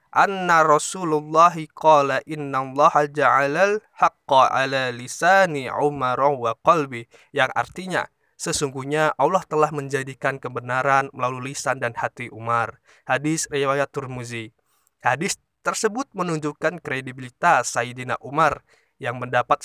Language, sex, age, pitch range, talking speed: Indonesian, male, 20-39, 125-150 Hz, 90 wpm